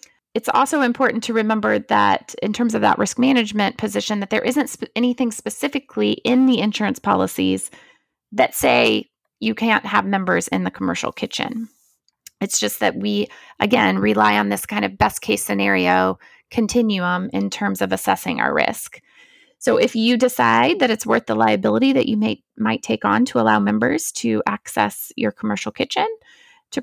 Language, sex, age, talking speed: English, female, 20-39, 170 wpm